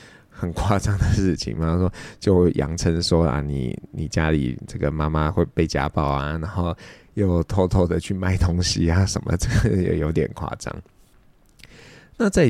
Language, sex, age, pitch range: Chinese, male, 20-39, 85-115 Hz